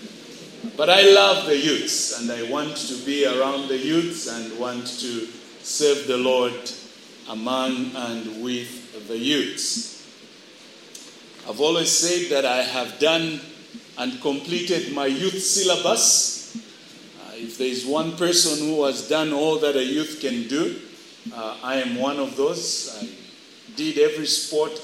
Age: 50-69